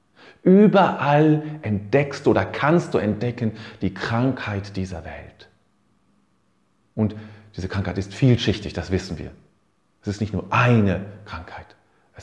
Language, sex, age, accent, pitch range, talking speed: German, male, 40-59, German, 95-150 Hz, 130 wpm